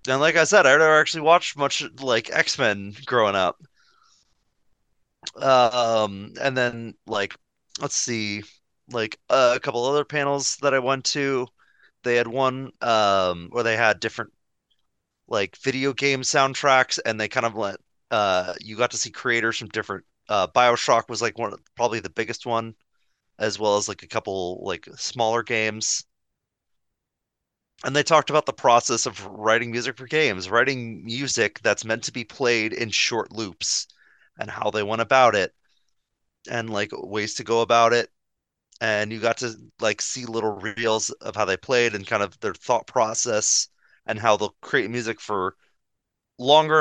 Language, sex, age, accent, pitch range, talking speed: English, male, 30-49, American, 110-130 Hz, 170 wpm